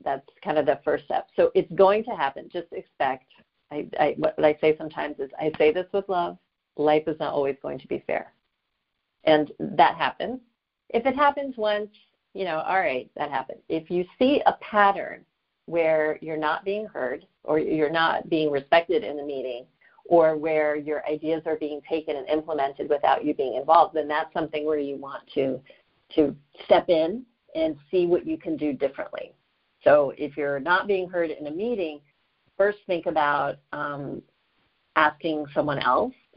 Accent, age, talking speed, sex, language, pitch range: American, 50-69, 180 wpm, female, English, 150-210 Hz